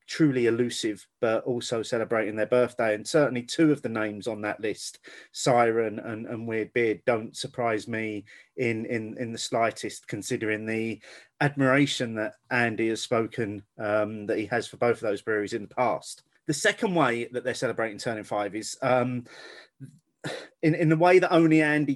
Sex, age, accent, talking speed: male, 30-49, British, 180 wpm